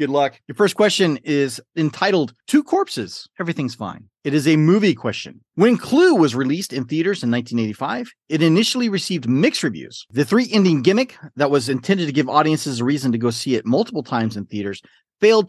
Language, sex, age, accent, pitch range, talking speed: English, male, 40-59, American, 125-185 Hz, 190 wpm